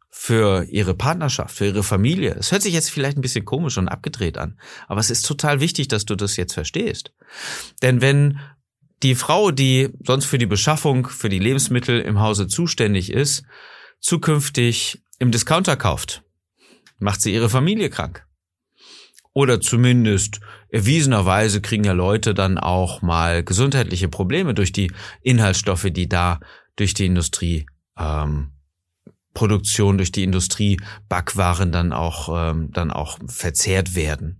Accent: German